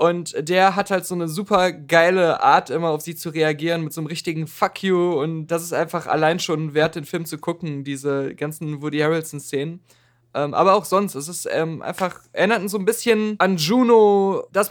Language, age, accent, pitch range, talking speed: German, 20-39, German, 160-205 Hz, 200 wpm